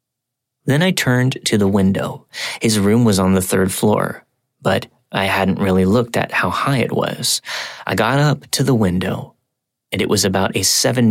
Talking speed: 190 wpm